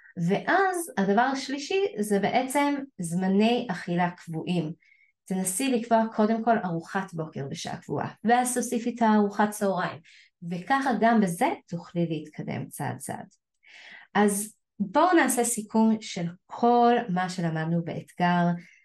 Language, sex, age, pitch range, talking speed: Hebrew, female, 20-39, 170-220 Hz, 120 wpm